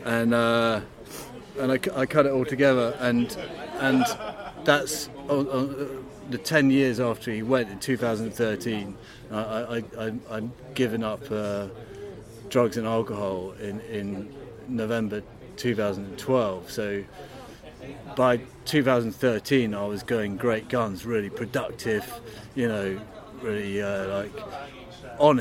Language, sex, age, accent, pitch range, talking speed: English, male, 30-49, British, 110-130 Hz, 120 wpm